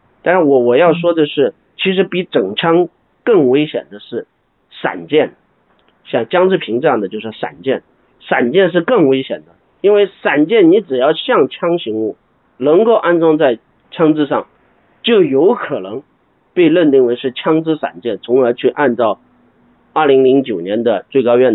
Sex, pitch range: male, 125-175 Hz